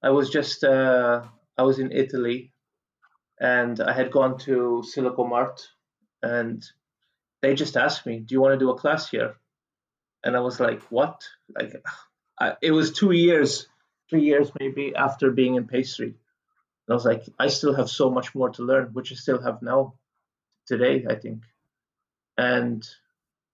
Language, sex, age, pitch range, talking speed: English, male, 30-49, 125-145 Hz, 170 wpm